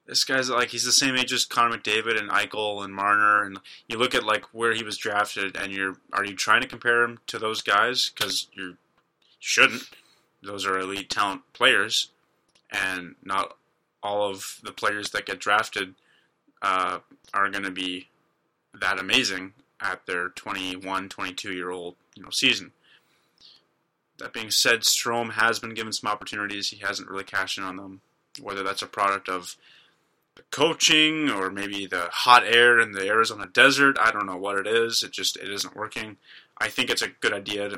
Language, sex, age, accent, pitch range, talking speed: English, male, 20-39, American, 95-115 Hz, 180 wpm